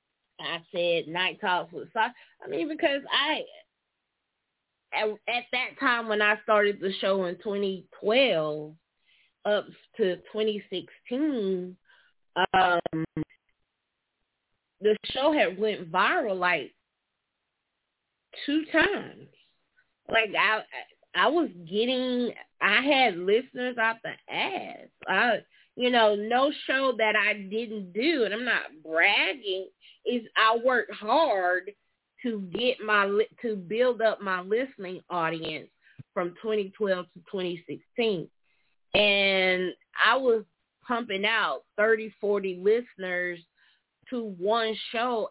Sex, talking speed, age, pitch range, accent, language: female, 110 wpm, 20-39, 185-240 Hz, American, English